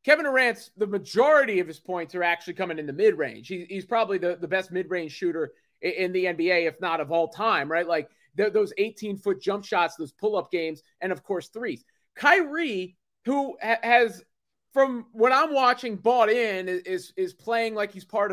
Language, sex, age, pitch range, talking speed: English, male, 30-49, 185-245 Hz, 195 wpm